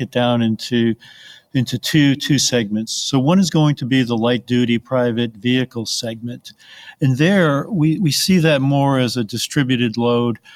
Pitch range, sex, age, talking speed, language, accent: 120-135 Hz, male, 50-69, 165 wpm, English, American